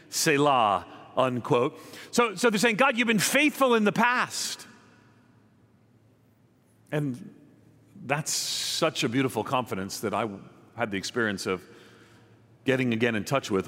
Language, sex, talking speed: English, male, 130 wpm